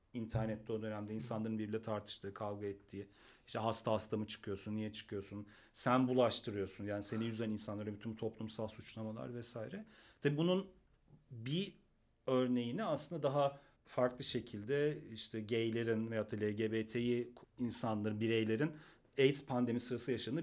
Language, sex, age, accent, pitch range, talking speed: Turkish, male, 40-59, native, 110-135 Hz, 125 wpm